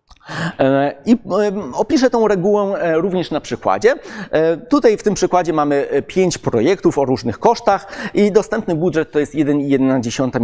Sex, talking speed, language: male, 130 wpm, Polish